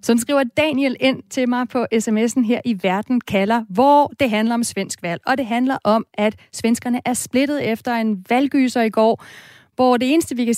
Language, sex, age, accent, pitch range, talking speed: Danish, female, 30-49, native, 215-265 Hz, 200 wpm